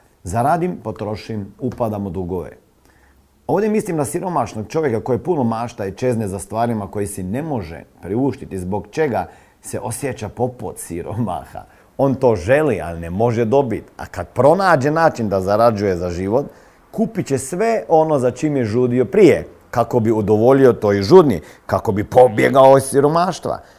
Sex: male